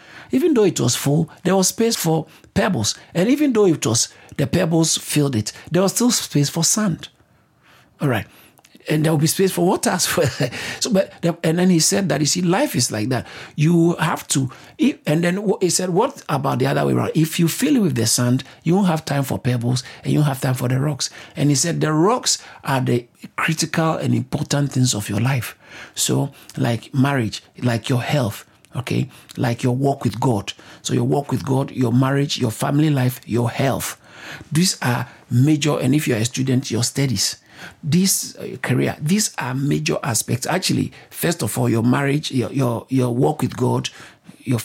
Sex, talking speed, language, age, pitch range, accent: male, 200 wpm, English, 60-79, 125-165 Hz, Nigerian